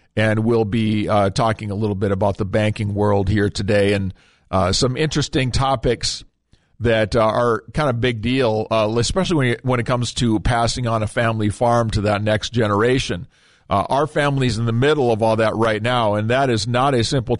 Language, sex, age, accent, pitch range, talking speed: English, male, 50-69, American, 110-130 Hz, 200 wpm